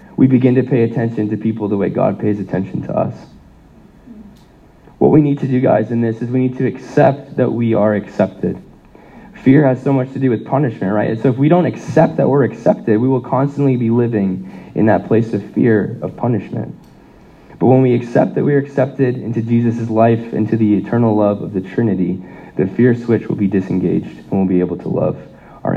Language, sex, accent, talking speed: English, male, American, 215 wpm